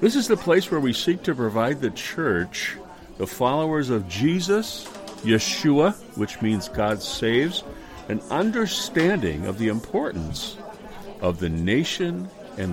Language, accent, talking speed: English, American, 135 wpm